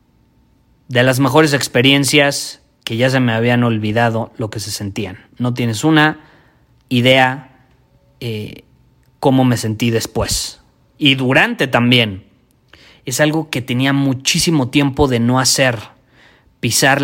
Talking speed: 125 wpm